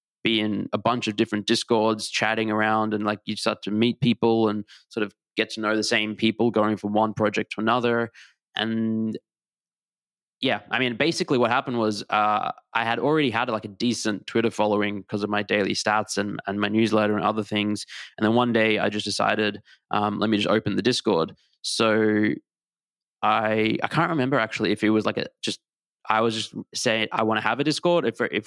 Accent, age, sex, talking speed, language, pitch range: Australian, 20-39, male, 210 wpm, English, 105-120 Hz